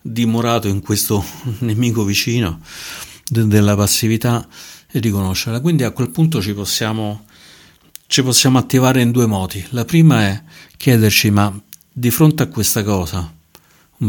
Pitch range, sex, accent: 95-115 Hz, male, native